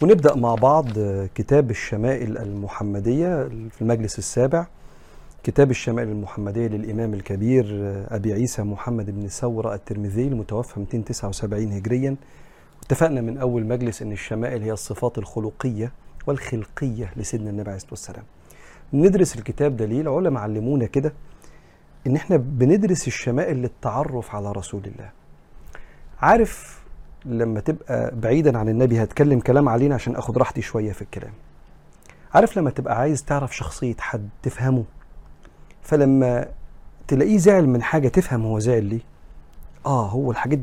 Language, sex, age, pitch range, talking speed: Arabic, male, 40-59, 105-135 Hz, 130 wpm